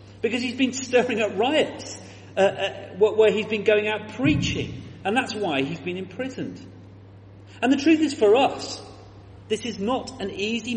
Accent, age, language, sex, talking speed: British, 40-59, English, male, 175 wpm